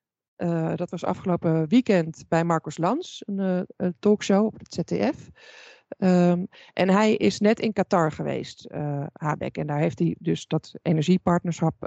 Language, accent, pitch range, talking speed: Dutch, Dutch, 160-190 Hz, 155 wpm